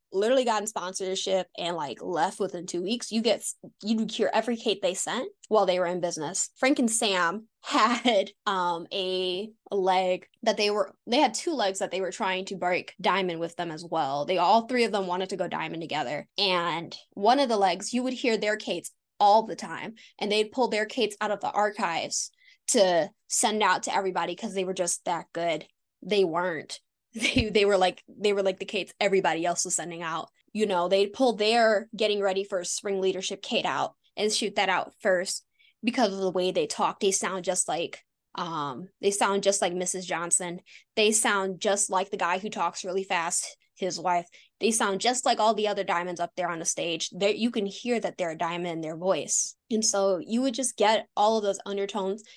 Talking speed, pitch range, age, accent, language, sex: 215 wpm, 180-220 Hz, 10-29, American, English, female